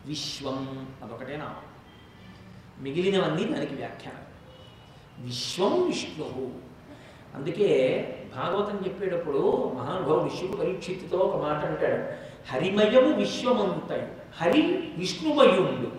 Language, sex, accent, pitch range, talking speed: Telugu, male, native, 145-245 Hz, 75 wpm